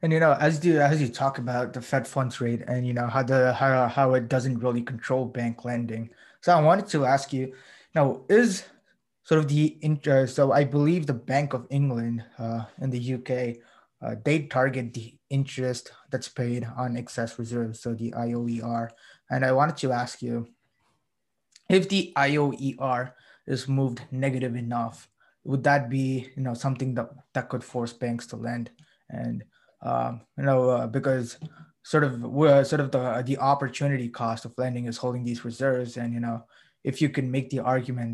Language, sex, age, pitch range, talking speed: English, male, 20-39, 120-135 Hz, 185 wpm